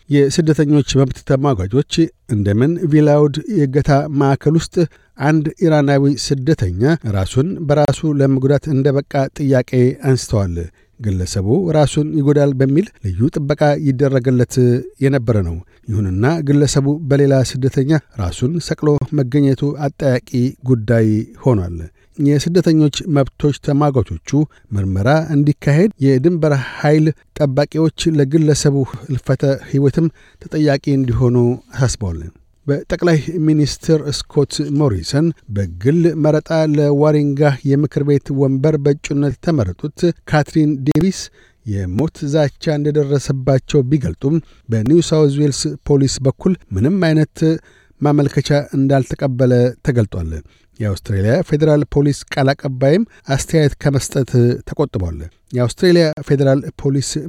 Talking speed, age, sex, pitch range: 90 wpm, 60-79, male, 130-150 Hz